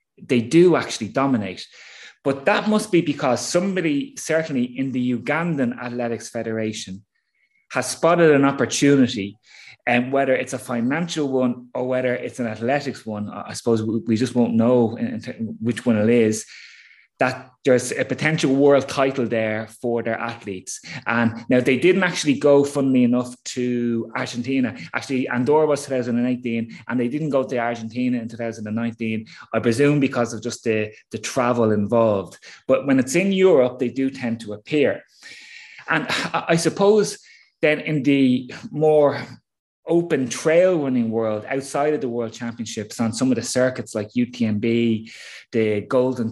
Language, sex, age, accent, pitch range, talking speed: English, male, 20-39, Irish, 115-140 Hz, 155 wpm